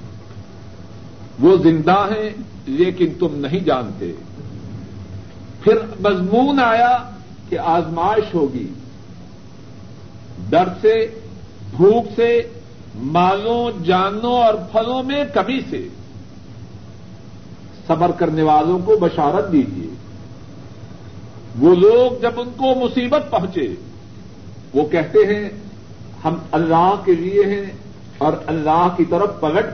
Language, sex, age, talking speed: Urdu, male, 60-79, 100 wpm